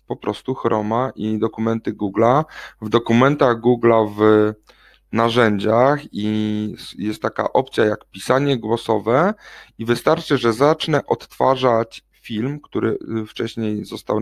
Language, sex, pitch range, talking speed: Polish, male, 110-130 Hz, 115 wpm